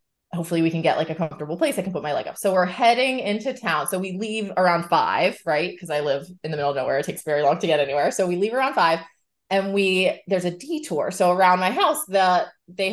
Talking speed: 260 wpm